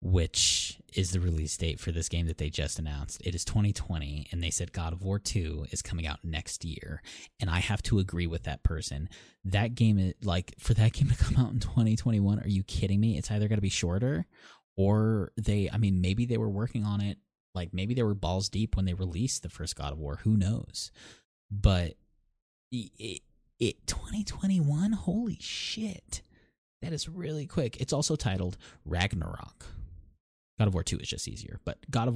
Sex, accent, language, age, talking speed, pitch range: male, American, English, 20-39, 200 wpm, 85-110 Hz